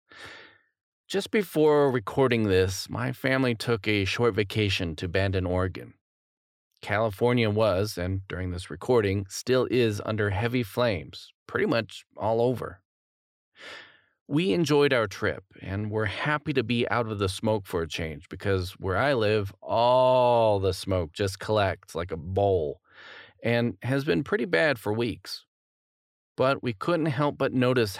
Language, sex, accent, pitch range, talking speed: English, male, American, 95-125 Hz, 150 wpm